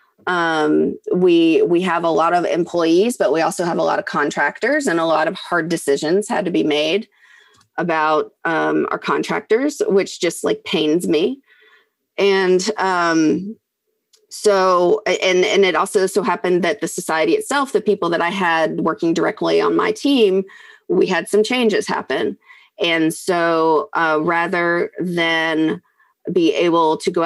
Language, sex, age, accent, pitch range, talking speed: English, female, 30-49, American, 165-220 Hz, 160 wpm